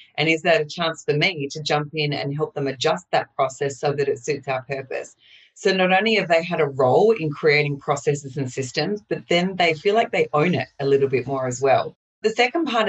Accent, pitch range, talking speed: Australian, 145-190 Hz, 240 wpm